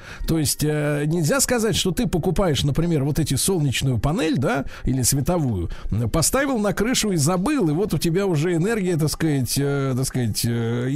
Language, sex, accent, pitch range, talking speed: Russian, male, native, 145-190 Hz, 165 wpm